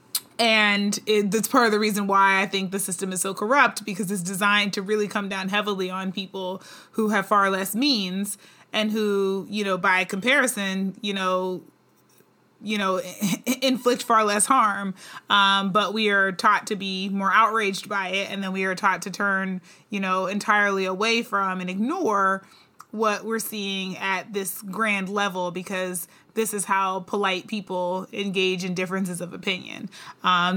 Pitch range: 190-220 Hz